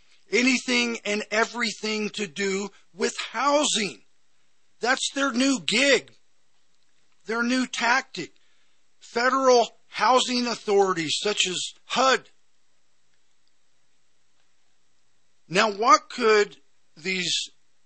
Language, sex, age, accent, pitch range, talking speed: English, male, 50-69, American, 140-220 Hz, 80 wpm